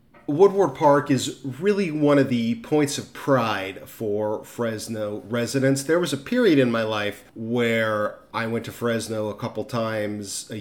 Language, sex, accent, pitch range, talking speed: English, male, American, 115-140 Hz, 165 wpm